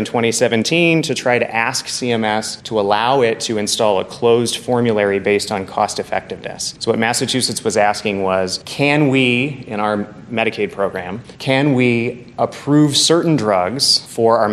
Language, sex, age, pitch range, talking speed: English, male, 30-49, 105-130 Hz, 155 wpm